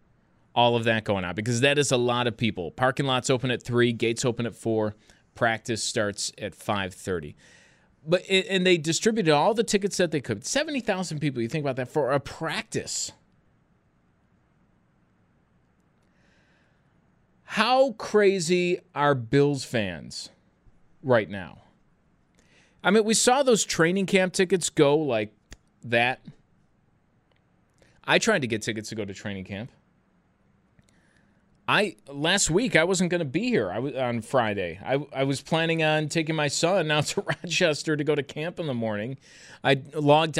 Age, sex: 30-49, male